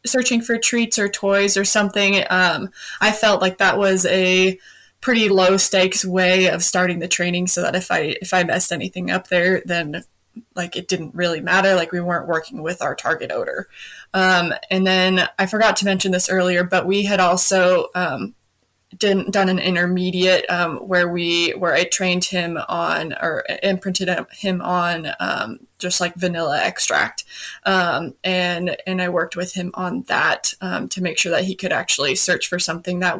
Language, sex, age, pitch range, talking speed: English, female, 20-39, 180-200 Hz, 185 wpm